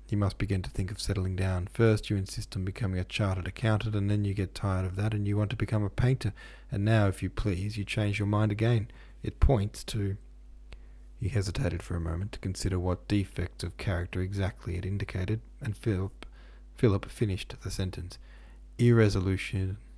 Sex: male